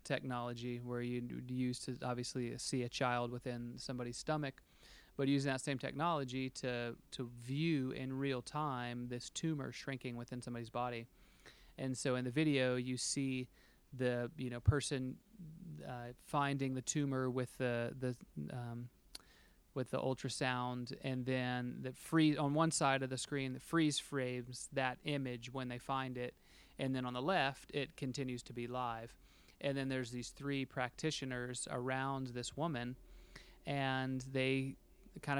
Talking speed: 160 wpm